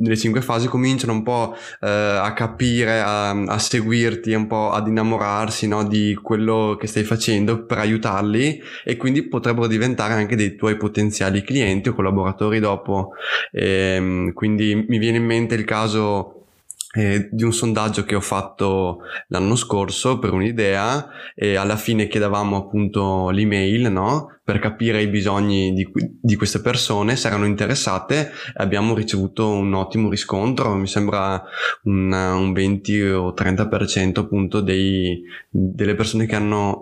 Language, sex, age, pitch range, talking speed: Italian, male, 20-39, 100-115 Hz, 150 wpm